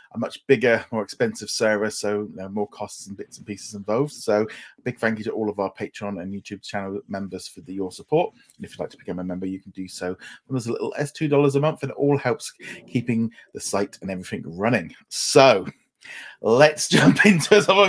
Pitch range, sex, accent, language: 105-145 Hz, male, British, English